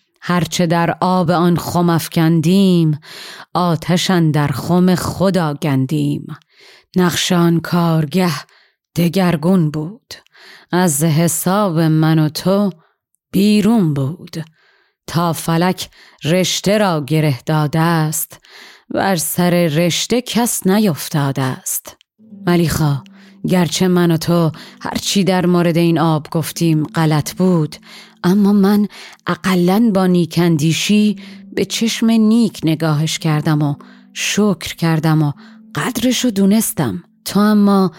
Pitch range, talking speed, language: 160-195 Hz, 105 wpm, Persian